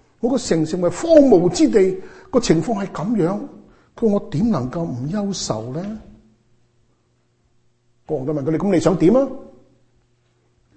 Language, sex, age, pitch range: Chinese, male, 60-79, 120-185 Hz